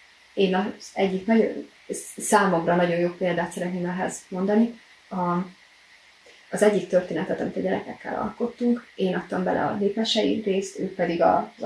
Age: 30-49